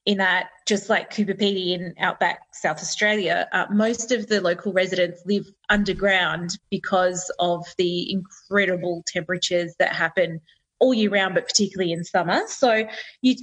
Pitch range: 180-225 Hz